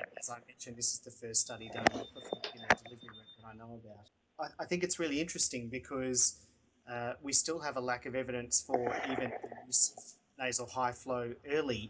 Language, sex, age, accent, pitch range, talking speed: English, male, 30-49, Australian, 115-130 Hz, 190 wpm